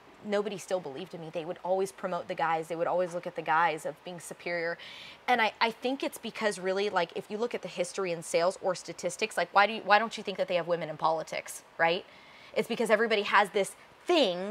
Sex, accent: female, American